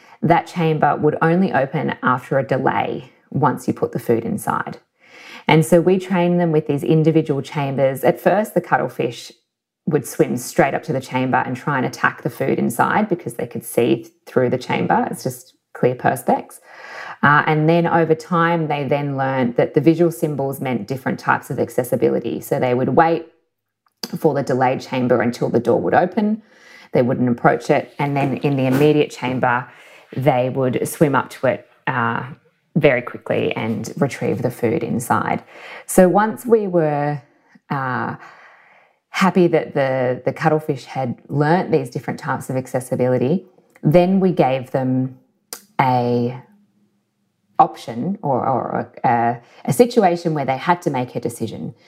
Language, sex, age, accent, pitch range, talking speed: English, female, 20-39, Australian, 130-170 Hz, 165 wpm